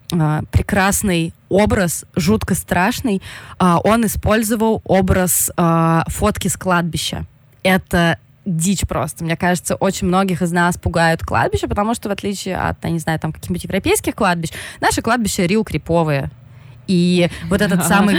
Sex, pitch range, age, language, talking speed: female, 160-195 Hz, 20-39, Russian, 140 wpm